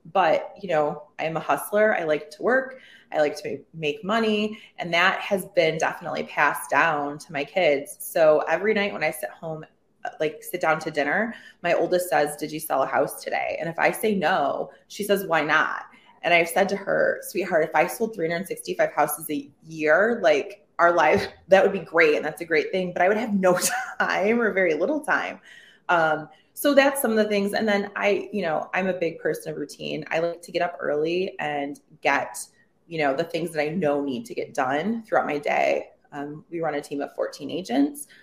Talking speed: 215 wpm